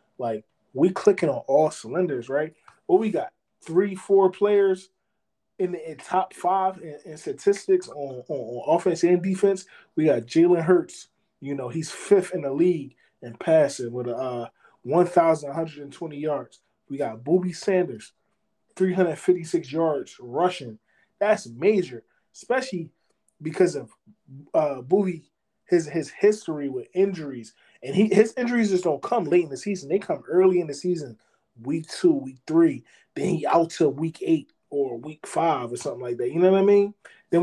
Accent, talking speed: American, 180 wpm